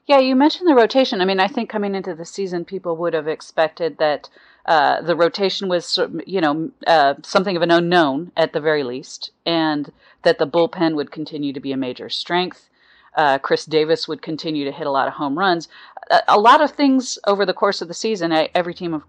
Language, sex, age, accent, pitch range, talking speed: English, female, 40-59, American, 150-190 Hz, 225 wpm